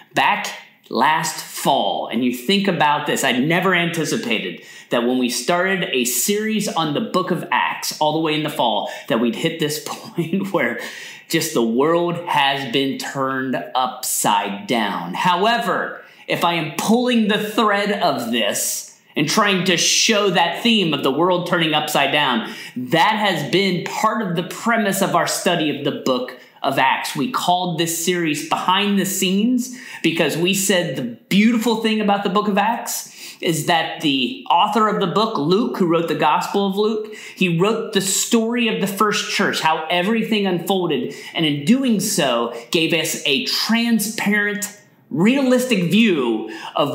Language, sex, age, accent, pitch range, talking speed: English, male, 30-49, American, 160-210 Hz, 170 wpm